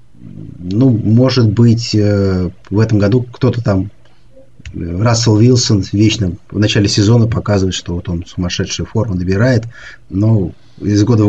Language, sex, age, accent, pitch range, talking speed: Russian, male, 30-49, native, 105-130 Hz, 135 wpm